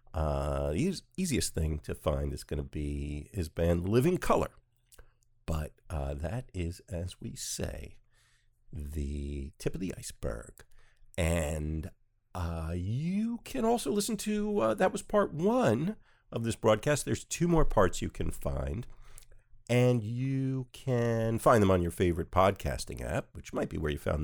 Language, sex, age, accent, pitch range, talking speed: English, male, 50-69, American, 80-120 Hz, 155 wpm